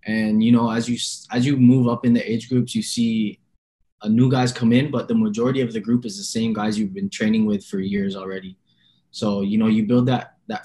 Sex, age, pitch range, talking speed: male, 10-29, 110-130 Hz, 250 wpm